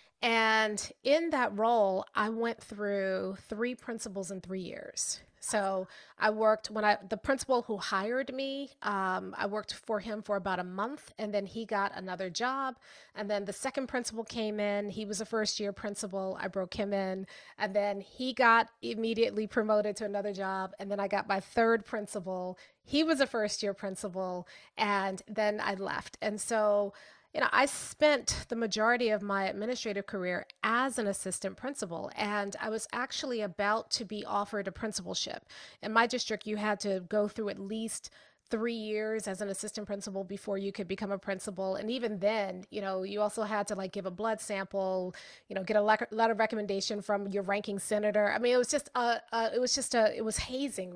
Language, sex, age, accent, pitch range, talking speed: English, female, 30-49, American, 200-225 Hz, 195 wpm